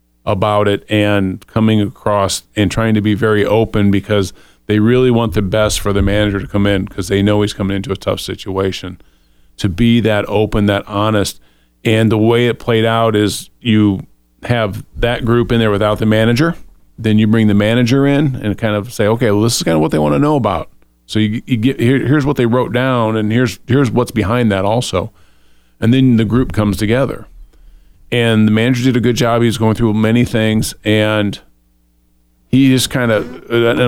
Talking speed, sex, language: 210 wpm, male, English